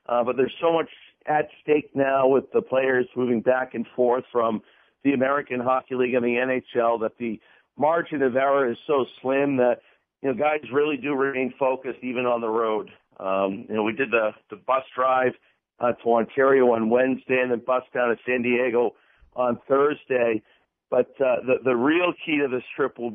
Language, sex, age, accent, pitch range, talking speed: English, male, 50-69, American, 120-145 Hz, 195 wpm